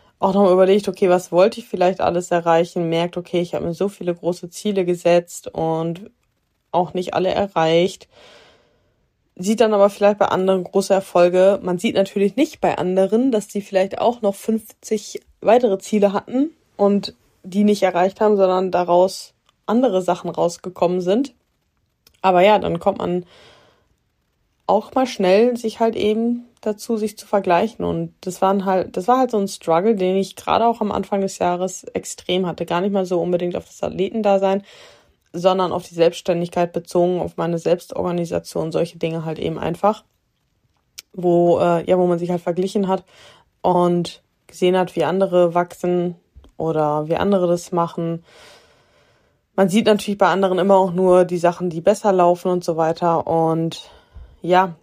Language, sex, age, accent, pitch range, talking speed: German, female, 20-39, German, 175-200 Hz, 165 wpm